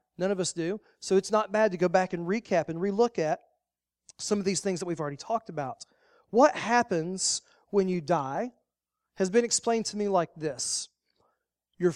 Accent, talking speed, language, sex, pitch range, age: American, 190 wpm, English, male, 165-220 Hz, 40-59